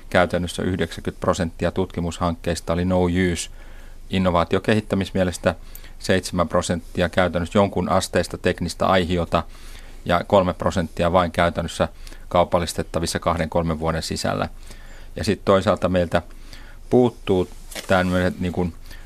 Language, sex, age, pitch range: Finnish, male, 30-49, 85-100 Hz